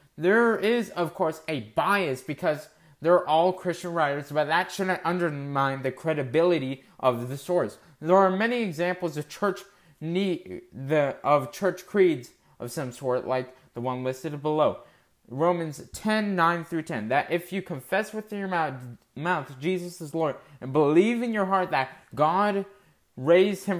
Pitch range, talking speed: 130-175 Hz, 160 wpm